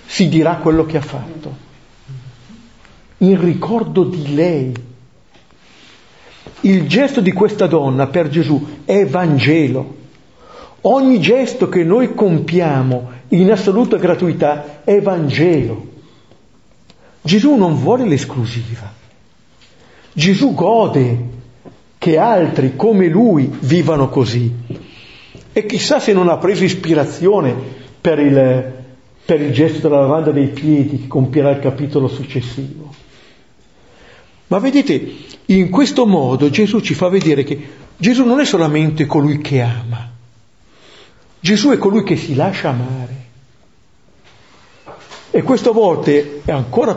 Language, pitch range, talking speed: Italian, 130-185 Hz, 115 wpm